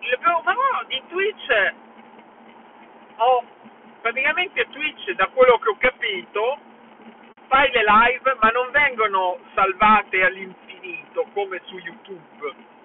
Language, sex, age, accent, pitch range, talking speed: Italian, male, 50-69, native, 190-270 Hz, 115 wpm